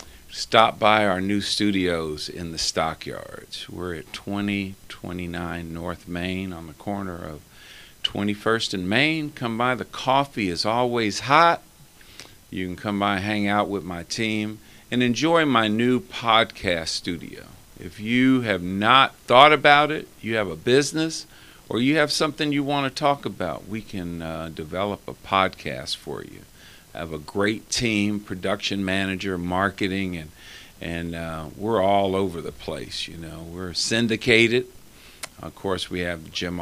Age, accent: 50-69, American